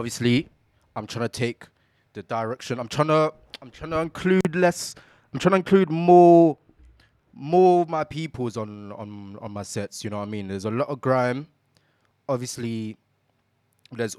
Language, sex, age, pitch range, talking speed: English, male, 20-39, 110-135 Hz, 175 wpm